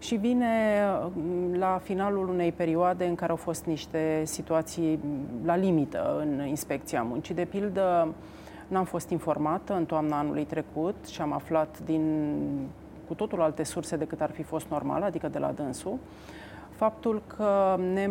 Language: Romanian